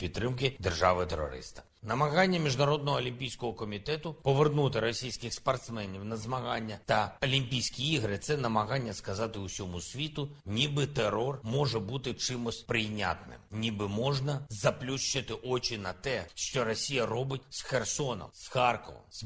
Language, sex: Ukrainian, male